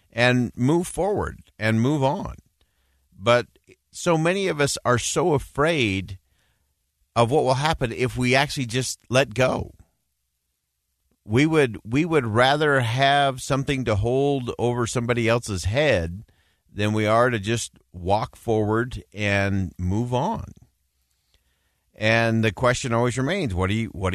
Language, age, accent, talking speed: English, 50-69, American, 140 wpm